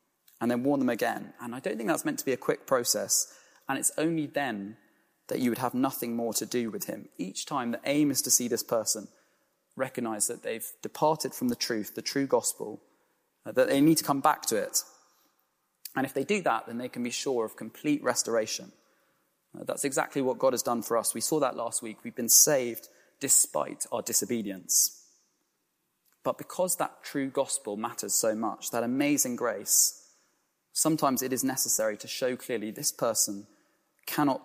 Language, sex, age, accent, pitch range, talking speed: English, male, 20-39, British, 120-155 Hz, 190 wpm